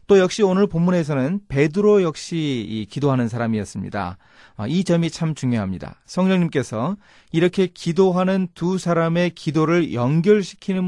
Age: 30-49